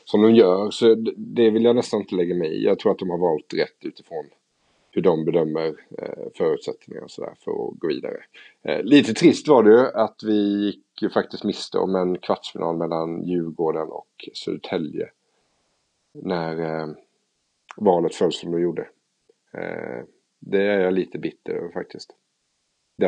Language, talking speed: English, 150 wpm